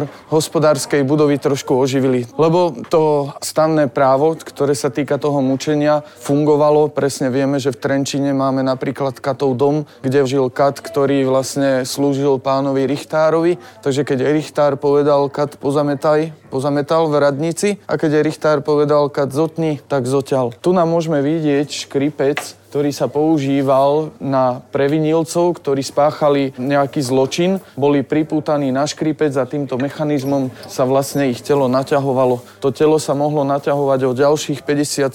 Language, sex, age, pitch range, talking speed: Slovak, male, 20-39, 135-155 Hz, 140 wpm